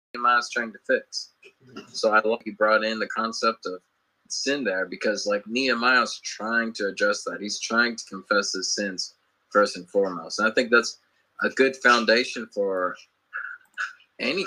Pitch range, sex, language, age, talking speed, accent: 110-130 Hz, male, English, 20-39, 160 wpm, American